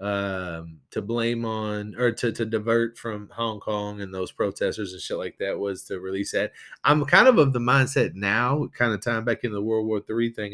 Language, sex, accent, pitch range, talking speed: English, male, American, 105-130 Hz, 220 wpm